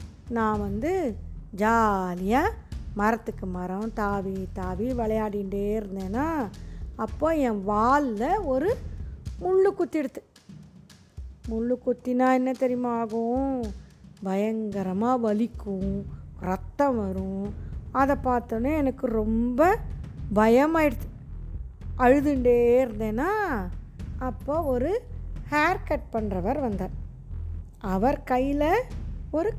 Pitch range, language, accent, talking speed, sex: 205-270 Hz, Tamil, native, 80 wpm, female